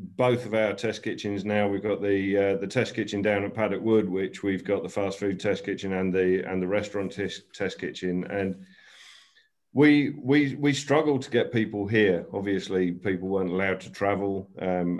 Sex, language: male, English